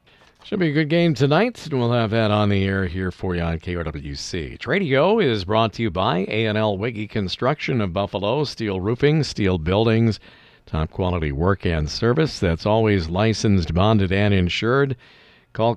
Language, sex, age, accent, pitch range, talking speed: English, male, 50-69, American, 90-120 Hz, 170 wpm